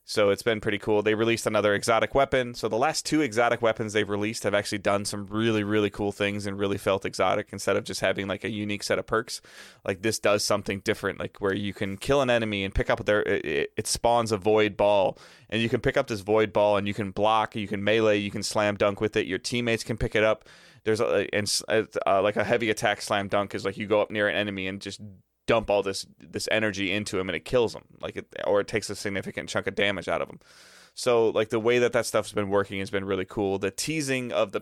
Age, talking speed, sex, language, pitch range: 20-39, 260 wpm, male, English, 100-110 Hz